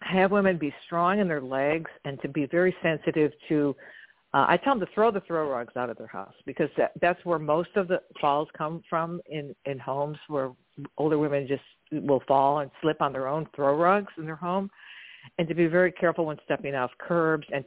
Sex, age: female, 50-69